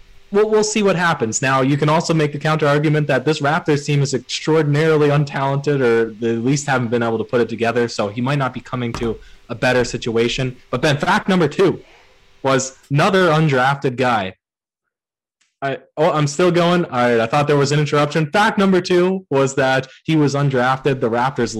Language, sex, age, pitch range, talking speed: English, male, 20-39, 120-150 Hz, 205 wpm